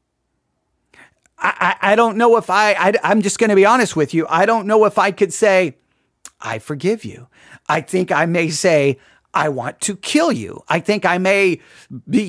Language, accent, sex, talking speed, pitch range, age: English, American, male, 200 wpm, 165-240 Hz, 40-59